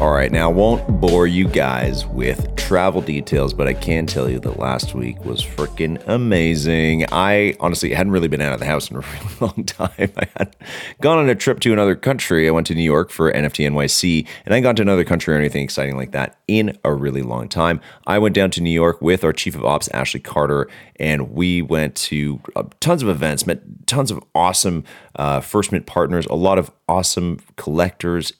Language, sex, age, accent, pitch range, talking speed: English, male, 30-49, American, 75-100 Hz, 220 wpm